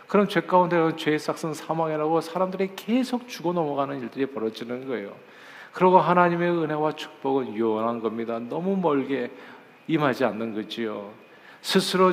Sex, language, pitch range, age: male, Korean, 120-165 Hz, 50-69